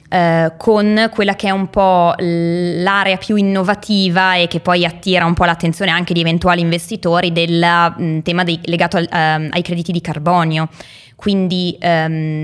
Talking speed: 135 wpm